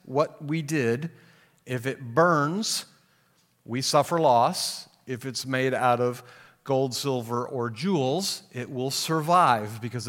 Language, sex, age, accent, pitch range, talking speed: English, male, 50-69, American, 115-150 Hz, 130 wpm